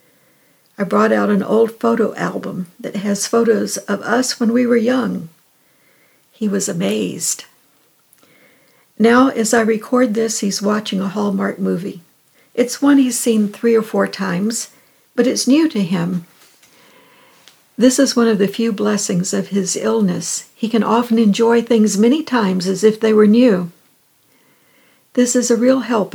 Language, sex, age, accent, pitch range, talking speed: English, female, 60-79, American, 195-235 Hz, 160 wpm